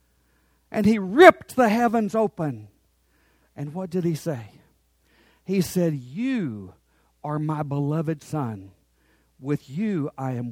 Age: 50-69